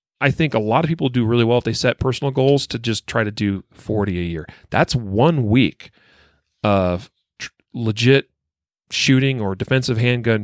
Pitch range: 100-135 Hz